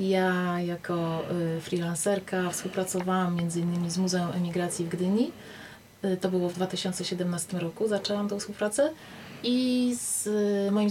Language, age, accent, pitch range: Polish, 30-49, native, 175-210 Hz